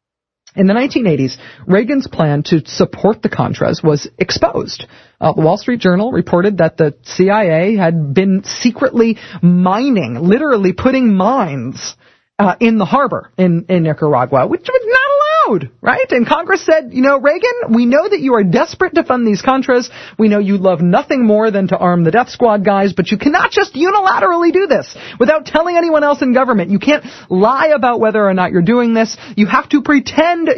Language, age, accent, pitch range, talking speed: English, 40-59, American, 185-280 Hz, 185 wpm